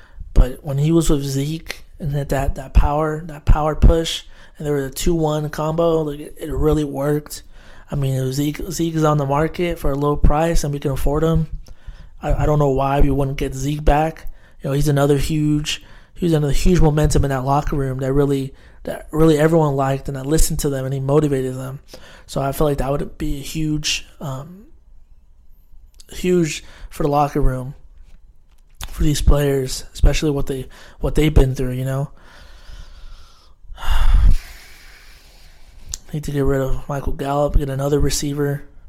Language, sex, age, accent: English, male, 20-39, American